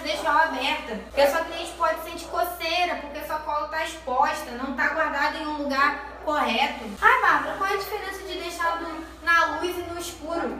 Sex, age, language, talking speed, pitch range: female, 10-29, Portuguese, 210 wpm, 260-330 Hz